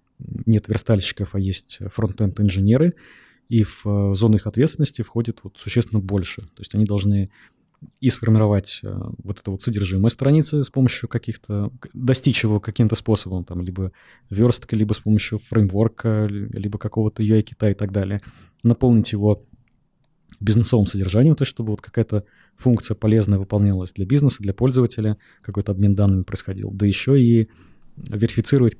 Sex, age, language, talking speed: male, 20-39, Russian, 145 wpm